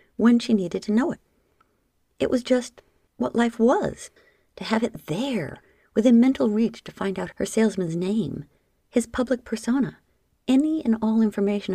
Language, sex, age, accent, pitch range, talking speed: English, female, 50-69, American, 185-240 Hz, 165 wpm